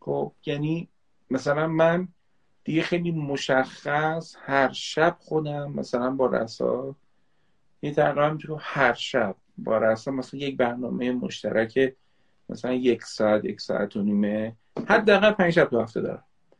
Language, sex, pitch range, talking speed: Persian, male, 145-190 Hz, 135 wpm